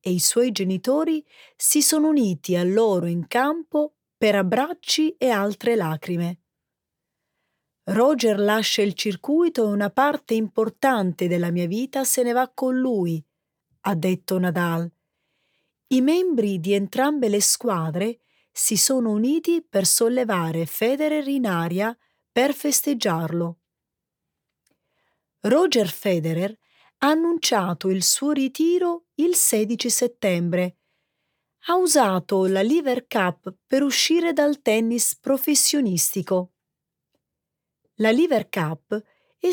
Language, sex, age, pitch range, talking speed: Italian, female, 30-49, 185-280 Hz, 115 wpm